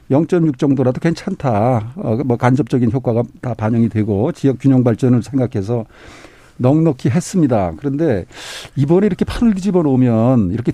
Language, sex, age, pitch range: Korean, male, 50-69, 130-170 Hz